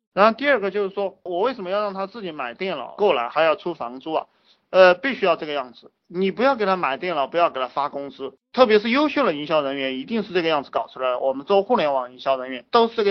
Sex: male